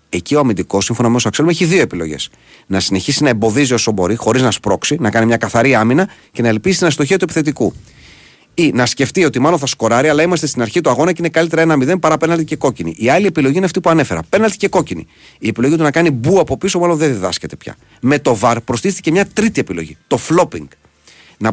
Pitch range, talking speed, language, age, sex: 105-155 Hz, 230 wpm, Greek, 30-49, male